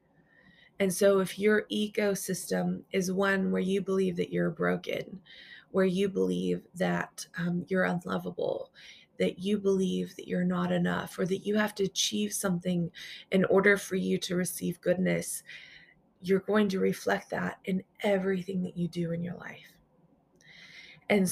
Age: 20-39